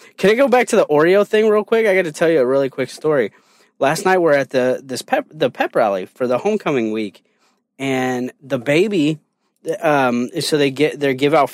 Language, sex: English, male